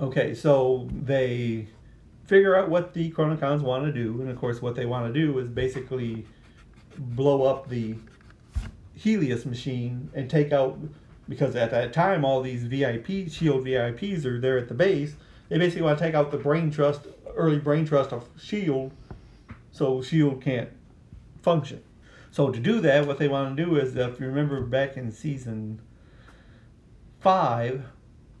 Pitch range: 120-145 Hz